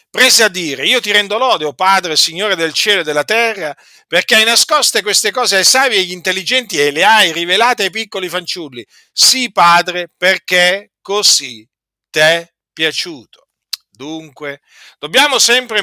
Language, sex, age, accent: Italian, male, 50-69, native